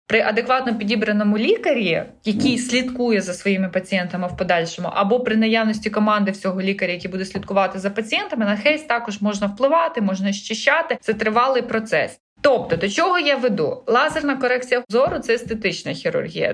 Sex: female